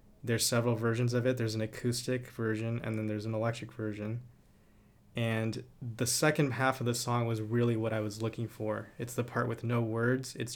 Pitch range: 110-125 Hz